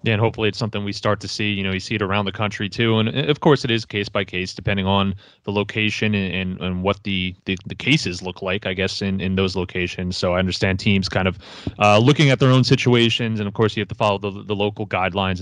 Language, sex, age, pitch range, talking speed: English, male, 30-49, 95-120 Hz, 265 wpm